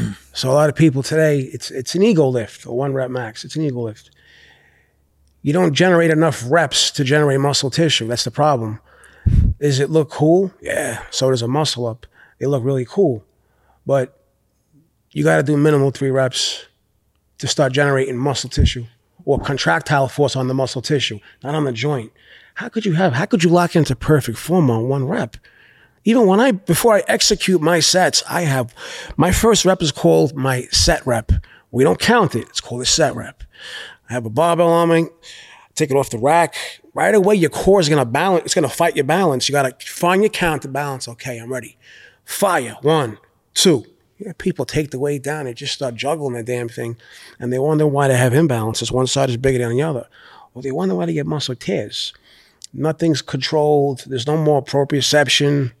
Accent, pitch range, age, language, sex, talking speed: American, 125-155 Hz, 30-49, English, male, 200 wpm